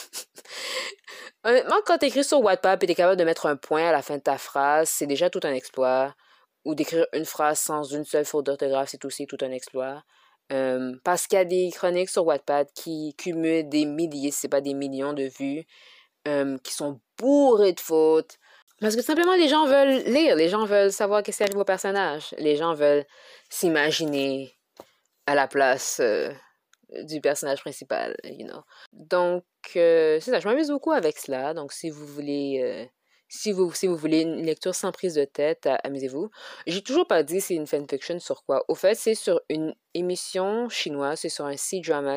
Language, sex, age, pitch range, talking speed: French, female, 20-39, 140-195 Hz, 200 wpm